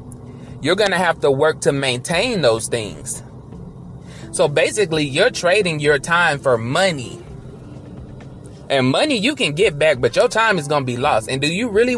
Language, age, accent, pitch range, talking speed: English, 20-39, American, 130-175 Hz, 180 wpm